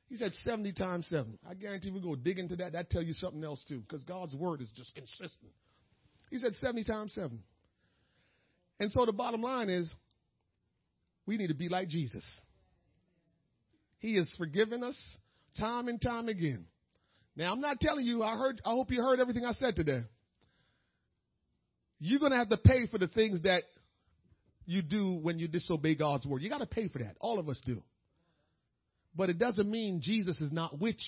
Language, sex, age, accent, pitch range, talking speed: English, male, 40-59, American, 145-235 Hz, 190 wpm